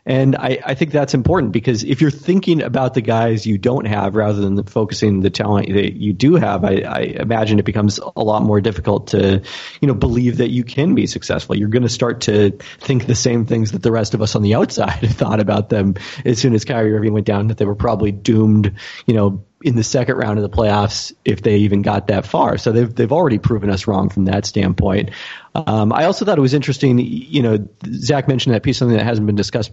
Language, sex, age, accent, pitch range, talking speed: English, male, 30-49, American, 105-130 Hz, 240 wpm